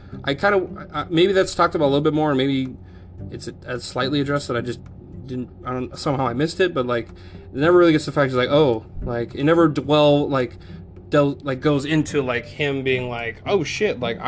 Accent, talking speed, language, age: American, 225 wpm, English, 20-39